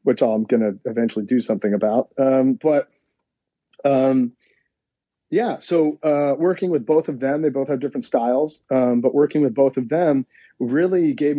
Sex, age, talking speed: male, 40-59, 170 wpm